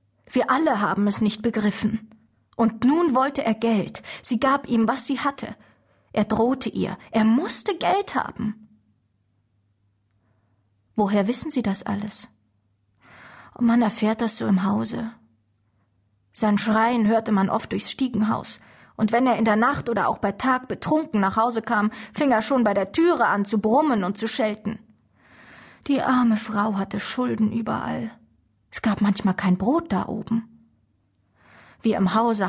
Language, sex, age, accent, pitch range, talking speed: German, female, 20-39, German, 190-235 Hz, 155 wpm